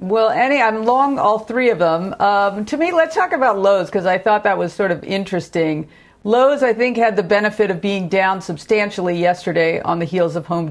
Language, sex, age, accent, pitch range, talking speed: English, female, 50-69, American, 190-245 Hz, 220 wpm